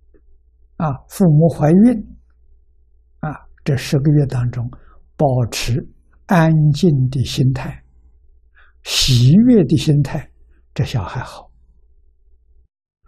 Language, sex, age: Chinese, male, 60-79